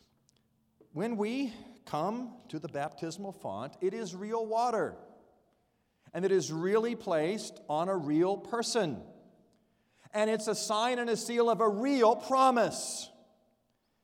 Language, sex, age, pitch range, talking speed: English, male, 50-69, 165-235 Hz, 130 wpm